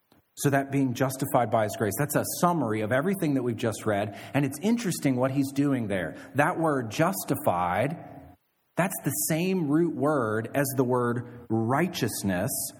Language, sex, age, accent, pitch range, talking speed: English, male, 40-59, American, 120-155 Hz, 165 wpm